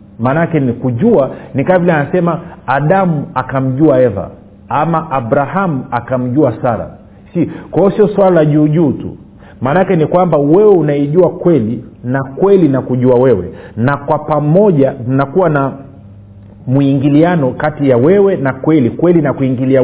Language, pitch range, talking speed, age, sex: Swahili, 125-165 Hz, 135 wpm, 50-69, male